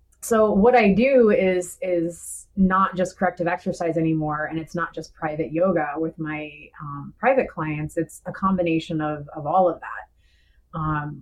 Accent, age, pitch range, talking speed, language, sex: American, 30-49, 155-180 Hz, 165 wpm, English, female